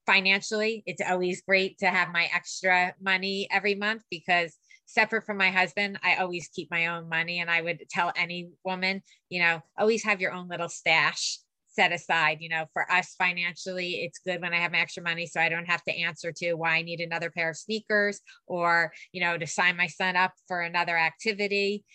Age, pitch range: 20-39, 170-195 Hz